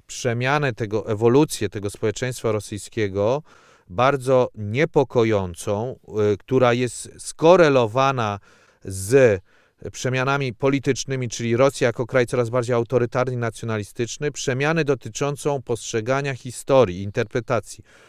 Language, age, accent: Polish, 40-59, native